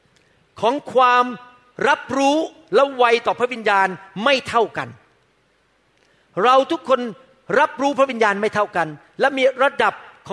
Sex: male